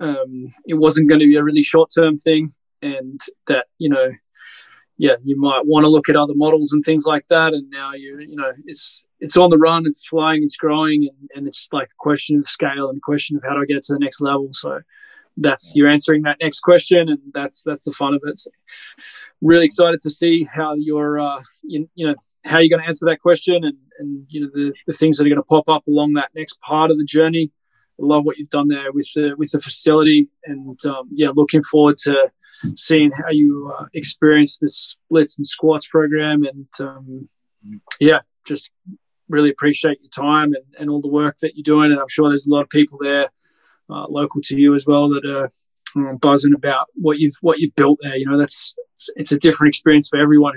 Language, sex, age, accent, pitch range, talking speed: English, male, 20-39, Australian, 145-155 Hz, 230 wpm